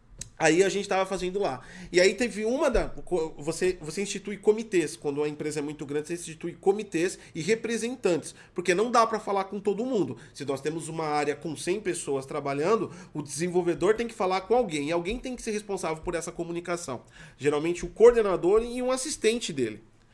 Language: Portuguese